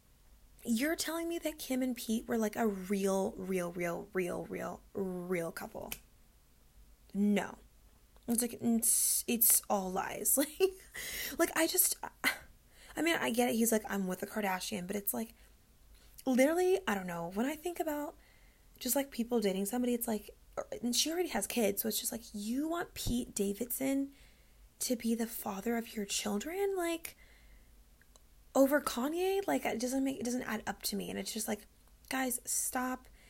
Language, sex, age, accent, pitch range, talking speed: English, female, 20-39, American, 205-285 Hz, 175 wpm